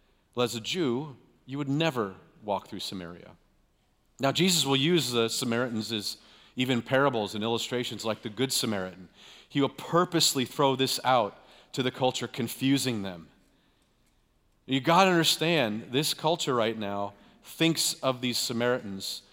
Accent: American